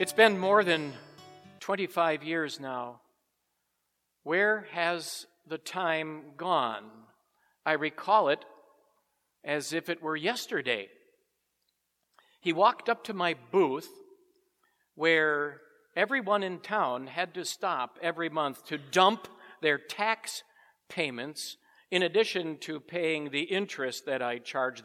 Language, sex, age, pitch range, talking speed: English, male, 50-69, 155-240 Hz, 120 wpm